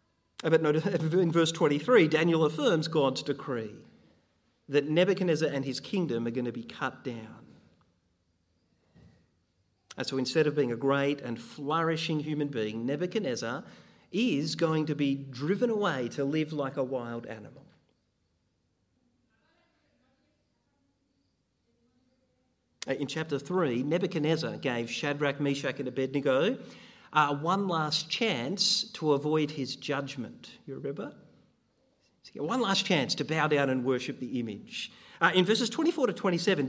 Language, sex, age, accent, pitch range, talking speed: English, male, 40-59, Australian, 140-190 Hz, 130 wpm